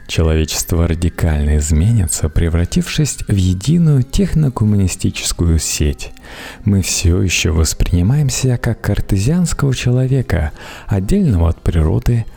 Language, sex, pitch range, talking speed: Russian, male, 85-125 Hz, 90 wpm